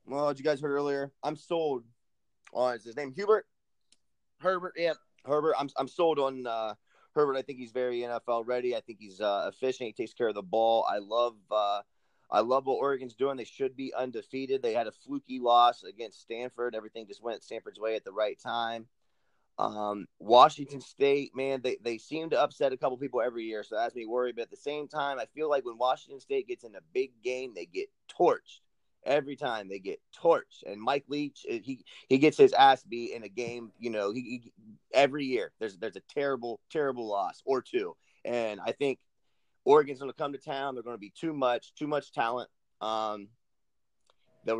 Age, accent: 30-49, American